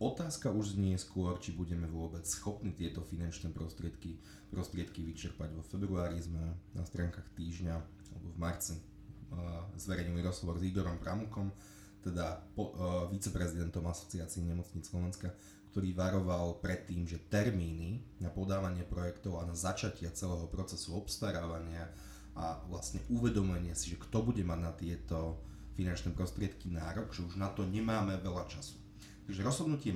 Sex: male